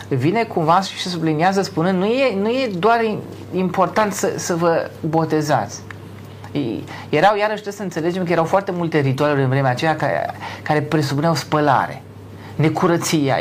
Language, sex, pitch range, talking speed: Romanian, male, 130-185 Hz, 155 wpm